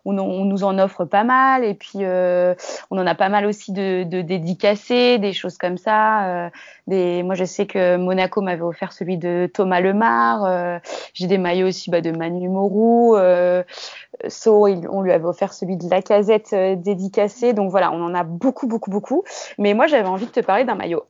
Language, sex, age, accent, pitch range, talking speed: French, female, 20-39, French, 185-230 Hz, 215 wpm